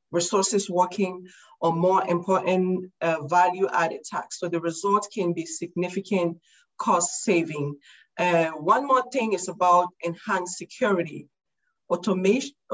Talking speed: 120 wpm